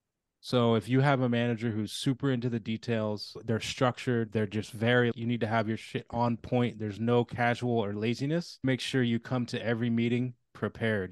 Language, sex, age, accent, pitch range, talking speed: English, male, 20-39, American, 110-125 Hz, 200 wpm